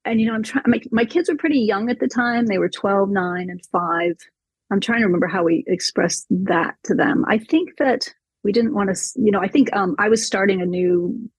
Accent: American